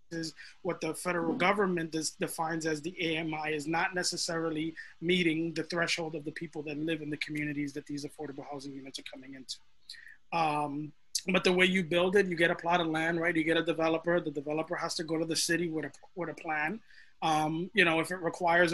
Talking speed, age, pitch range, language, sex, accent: 220 wpm, 20-39, 160-175 Hz, English, male, American